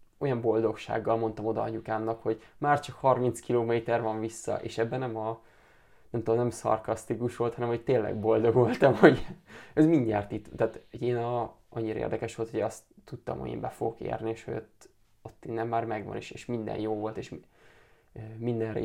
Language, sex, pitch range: Hungarian, male, 110-120 Hz